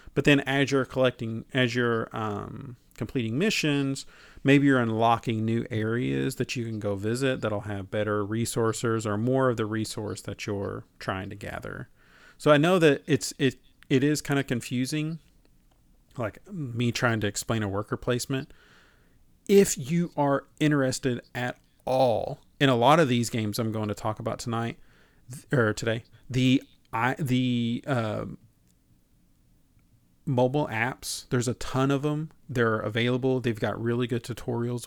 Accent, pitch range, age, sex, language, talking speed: American, 110-130 Hz, 40-59, male, English, 155 wpm